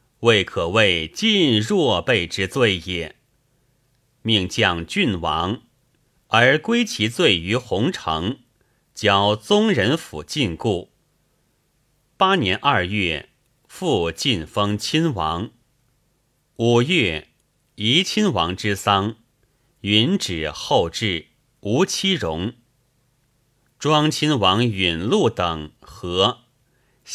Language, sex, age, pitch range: Chinese, male, 30-49, 100-145 Hz